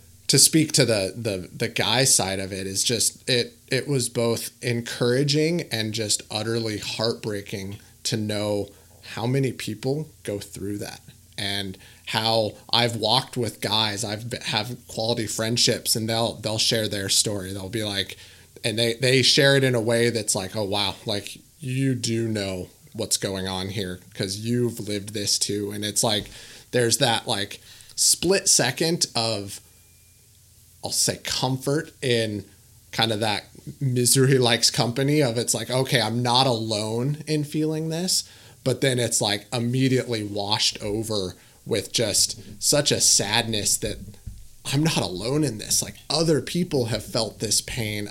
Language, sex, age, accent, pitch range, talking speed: English, male, 30-49, American, 105-125 Hz, 160 wpm